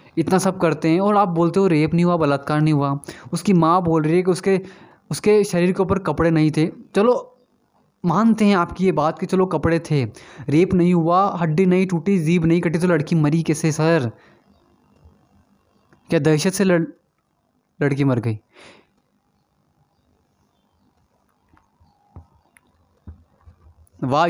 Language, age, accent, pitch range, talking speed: Hindi, 20-39, native, 140-180 Hz, 150 wpm